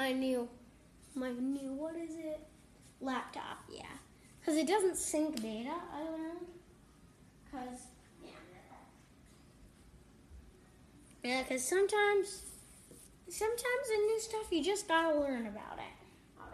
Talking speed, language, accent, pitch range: 120 wpm, English, American, 245-315 Hz